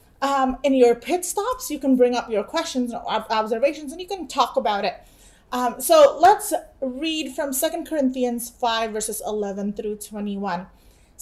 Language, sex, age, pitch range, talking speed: English, female, 30-49, 240-300 Hz, 170 wpm